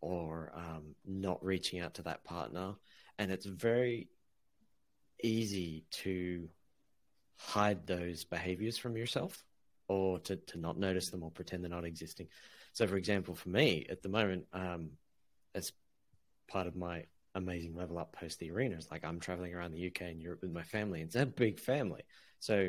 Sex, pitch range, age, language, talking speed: male, 85-105 Hz, 30-49, English, 170 wpm